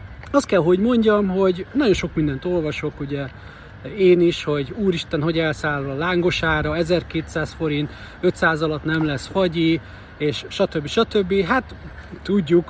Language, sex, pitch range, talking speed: Hungarian, male, 140-175 Hz, 145 wpm